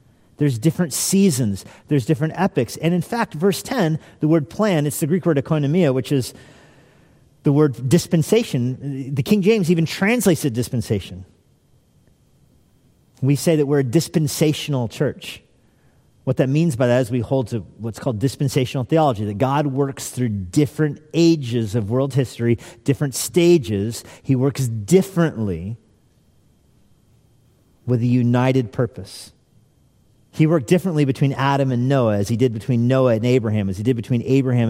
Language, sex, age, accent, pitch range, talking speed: English, male, 40-59, American, 120-165 Hz, 150 wpm